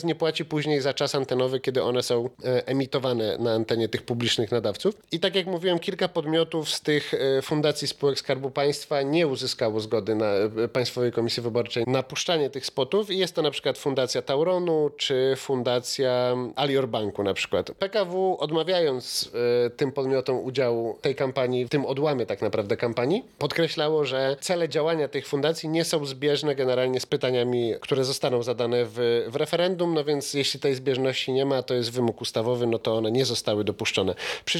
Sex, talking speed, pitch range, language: male, 175 wpm, 125-165 Hz, Polish